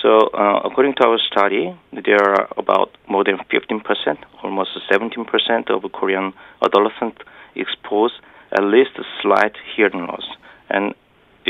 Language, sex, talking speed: English, male, 135 wpm